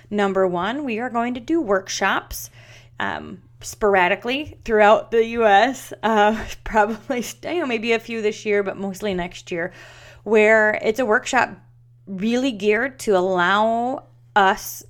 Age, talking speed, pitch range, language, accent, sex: 30-49, 135 wpm, 175-220 Hz, English, American, female